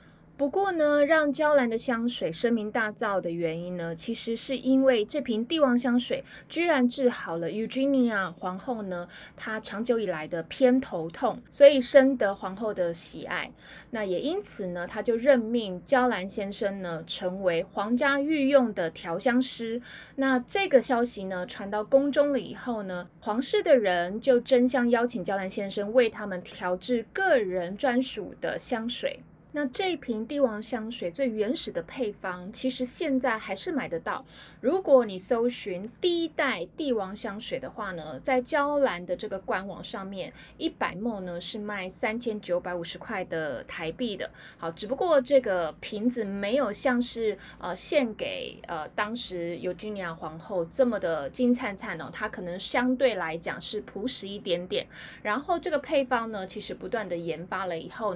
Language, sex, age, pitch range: Chinese, female, 20-39, 185-260 Hz